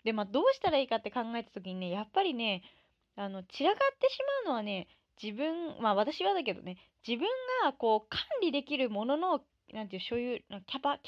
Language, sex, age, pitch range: Japanese, female, 20-39, 205-295 Hz